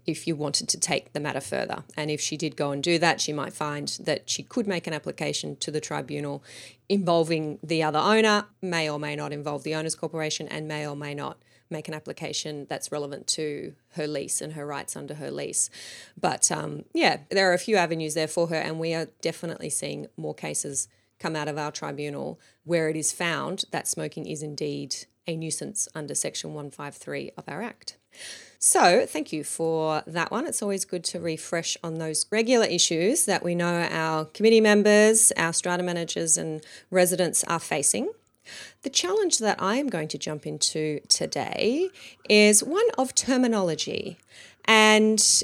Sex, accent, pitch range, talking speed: female, Australian, 155-200 Hz, 185 wpm